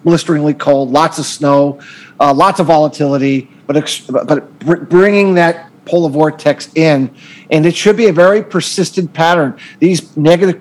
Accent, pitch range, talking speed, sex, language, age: American, 150-180 Hz, 145 wpm, male, English, 50-69